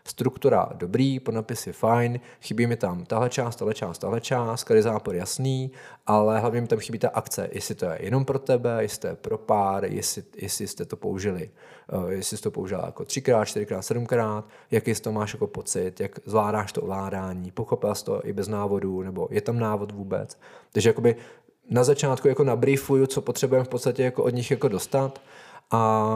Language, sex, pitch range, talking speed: Czech, male, 100-120 Hz, 190 wpm